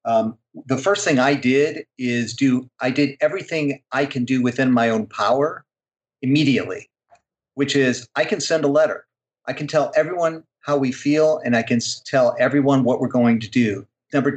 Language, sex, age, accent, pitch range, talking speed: English, male, 40-59, American, 120-140 Hz, 185 wpm